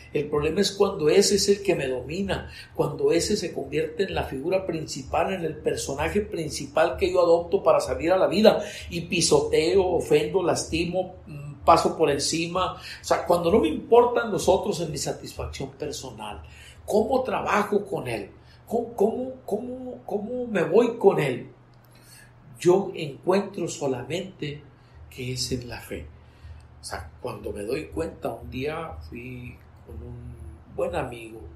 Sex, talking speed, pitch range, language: male, 150 wpm, 135-200 Hz, Spanish